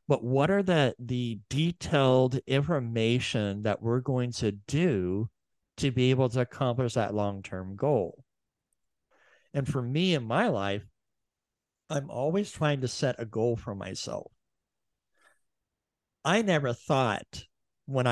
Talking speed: 130 wpm